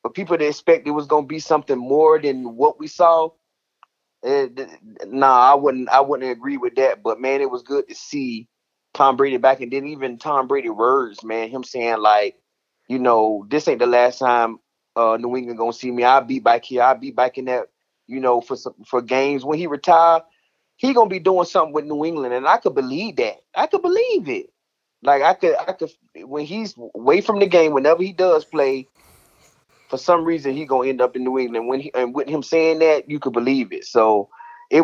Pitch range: 125-170 Hz